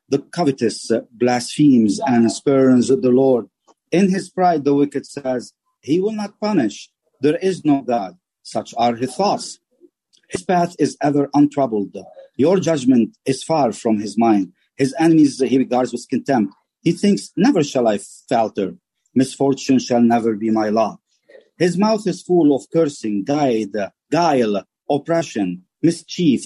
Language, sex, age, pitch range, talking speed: English, male, 50-69, 110-160 Hz, 145 wpm